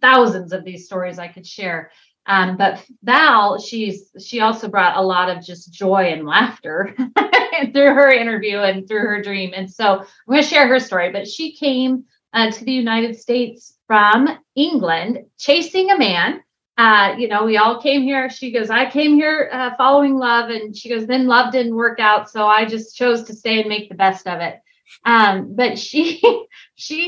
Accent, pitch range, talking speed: American, 195-250 Hz, 195 wpm